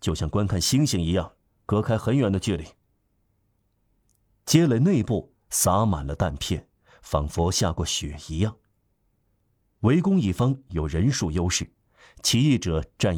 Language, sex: Chinese, male